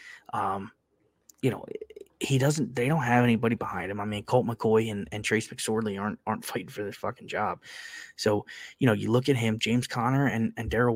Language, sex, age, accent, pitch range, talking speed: English, male, 20-39, American, 110-130 Hz, 210 wpm